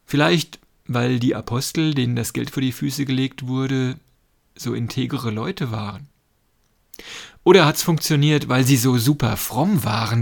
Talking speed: 145 wpm